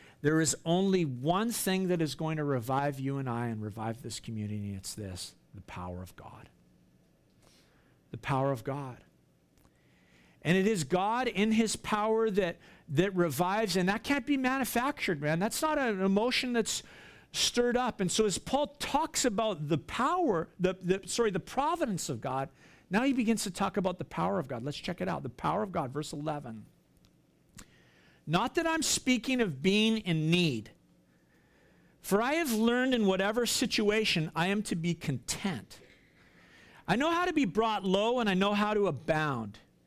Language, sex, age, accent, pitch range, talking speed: English, male, 50-69, American, 135-220 Hz, 180 wpm